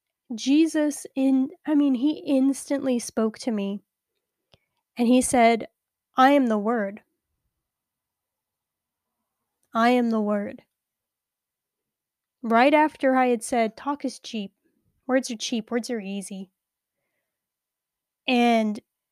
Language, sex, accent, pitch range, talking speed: English, female, American, 220-270 Hz, 110 wpm